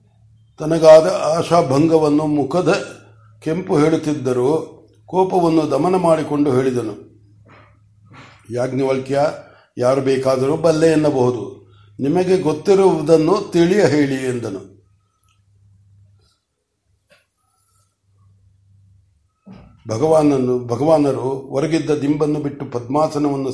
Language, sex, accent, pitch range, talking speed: Kannada, male, native, 125-160 Hz, 60 wpm